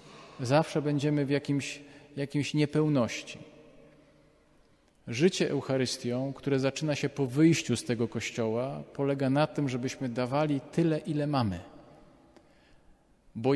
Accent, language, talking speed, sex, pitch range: native, Polish, 105 wpm, male, 125-150 Hz